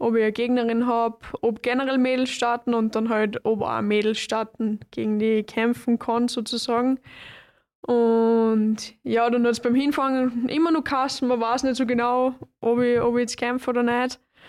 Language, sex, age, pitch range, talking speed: German, female, 20-39, 220-255 Hz, 185 wpm